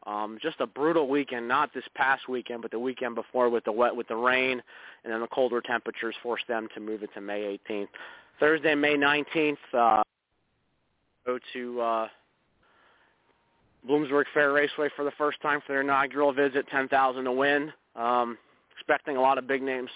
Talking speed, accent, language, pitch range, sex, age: 185 wpm, American, English, 115-135 Hz, male, 30-49